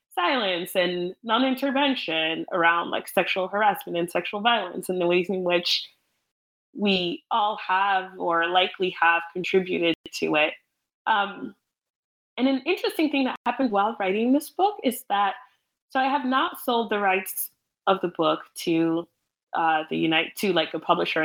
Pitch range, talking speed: 175-240 Hz, 155 wpm